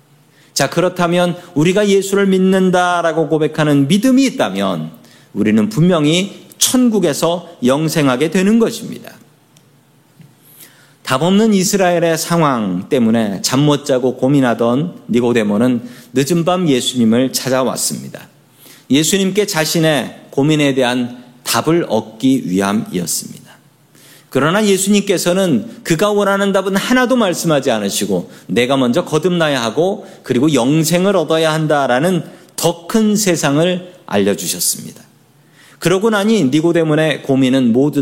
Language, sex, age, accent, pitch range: Korean, male, 40-59, native, 130-185 Hz